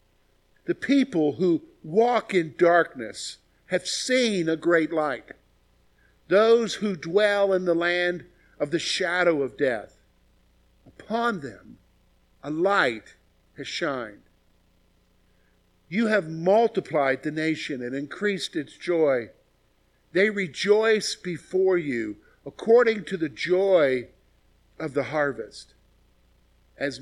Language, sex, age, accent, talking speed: English, male, 50-69, American, 110 wpm